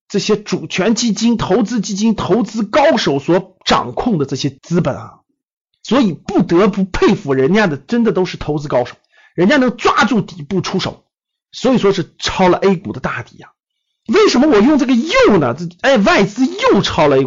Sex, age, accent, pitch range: male, 50-69, native, 170-235 Hz